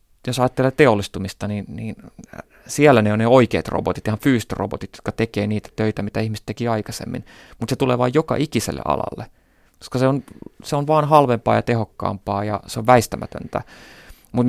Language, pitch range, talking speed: Finnish, 105-125 Hz, 175 wpm